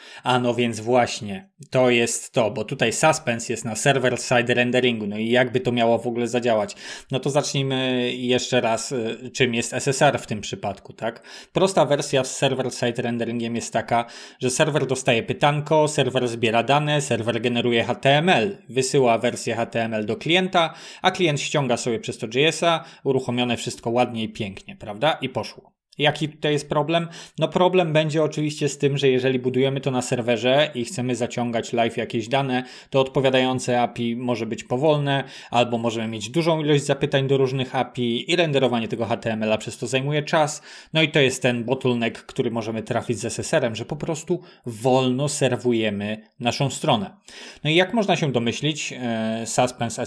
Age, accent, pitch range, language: 20-39, native, 120-145 Hz, Polish